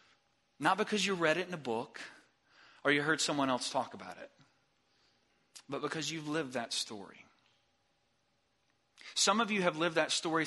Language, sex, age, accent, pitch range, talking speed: English, male, 40-59, American, 135-165 Hz, 165 wpm